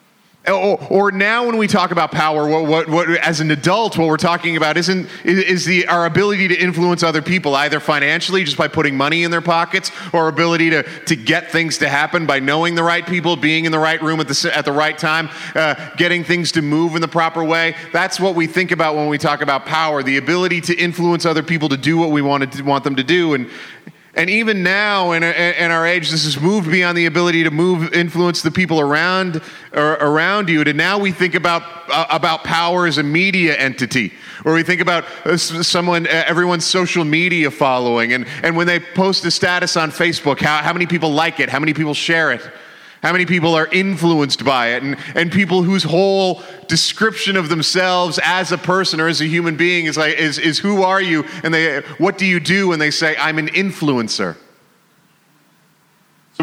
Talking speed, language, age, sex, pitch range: 210 wpm, English, 30-49, male, 155-180 Hz